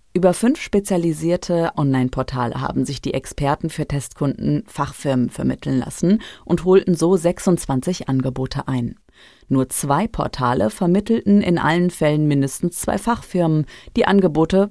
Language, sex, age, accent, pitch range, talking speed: German, female, 30-49, German, 135-185 Hz, 125 wpm